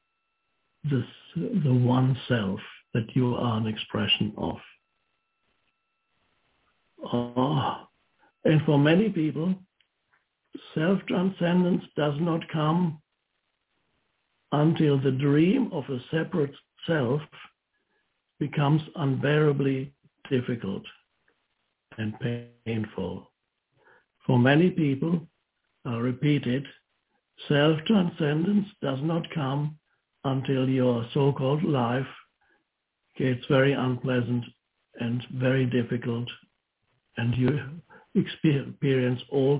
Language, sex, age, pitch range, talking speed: English, male, 60-79, 125-160 Hz, 85 wpm